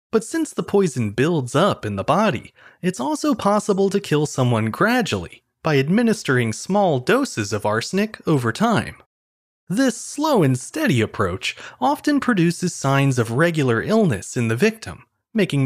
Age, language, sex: 30-49, English, male